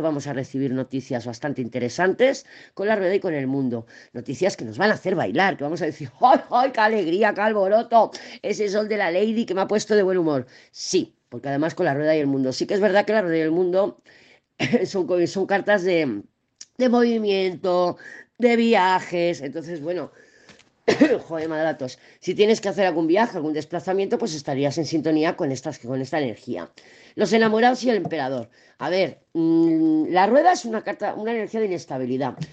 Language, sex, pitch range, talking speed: Spanish, female, 145-215 Hz, 195 wpm